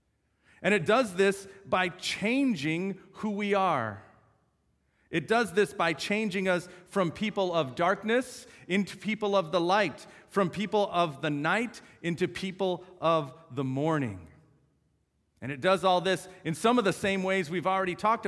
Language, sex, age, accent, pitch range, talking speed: English, male, 40-59, American, 155-195 Hz, 160 wpm